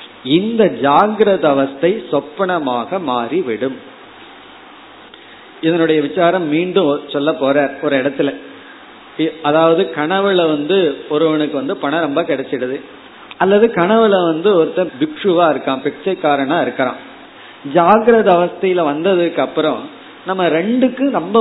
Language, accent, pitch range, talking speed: Tamil, native, 150-195 Hz, 95 wpm